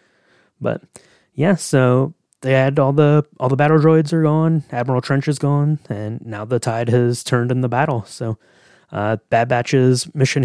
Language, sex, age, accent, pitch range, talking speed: English, male, 20-39, American, 110-135 Hz, 180 wpm